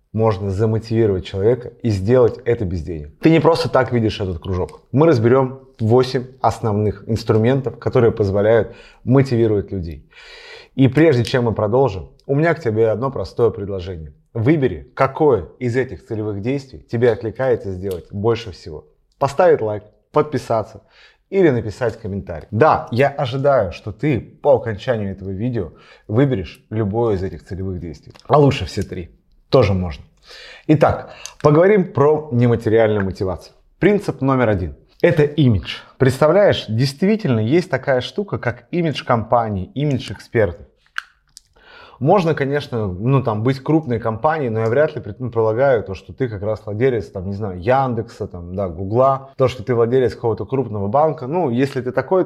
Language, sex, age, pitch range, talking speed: Russian, male, 30-49, 105-135 Hz, 150 wpm